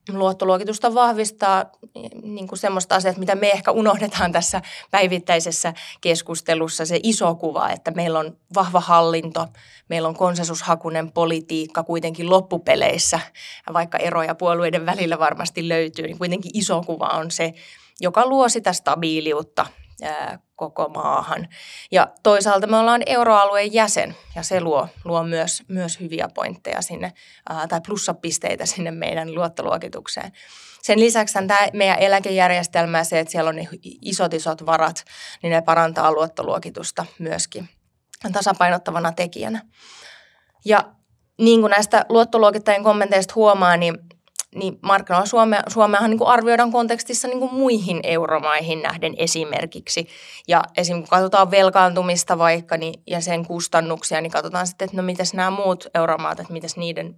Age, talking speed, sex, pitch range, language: 20-39, 135 wpm, female, 165-205 Hz, Finnish